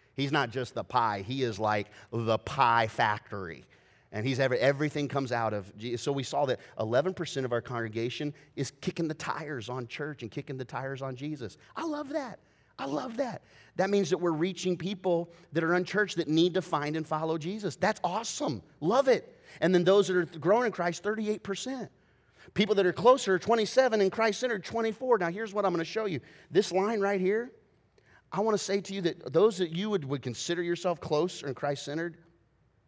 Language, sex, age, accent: English, male, 30-49, American